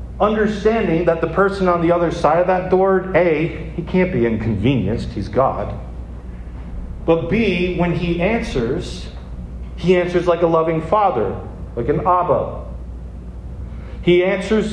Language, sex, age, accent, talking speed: English, male, 40-59, American, 140 wpm